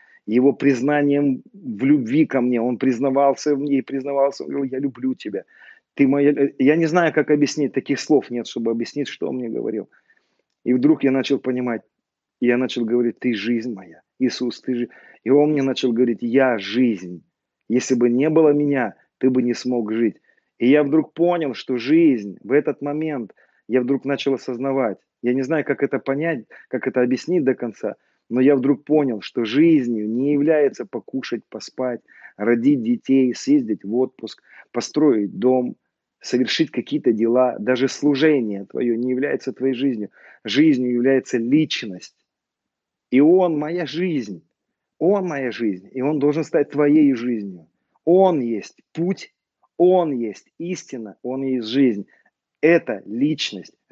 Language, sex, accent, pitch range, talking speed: Russian, male, native, 125-150 Hz, 155 wpm